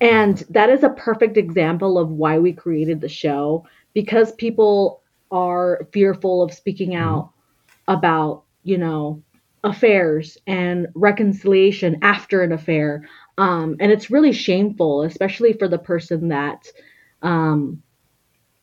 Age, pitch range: 30-49, 160-205 Hz